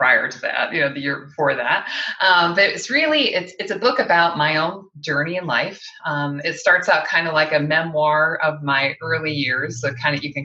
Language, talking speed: English, 235 wpm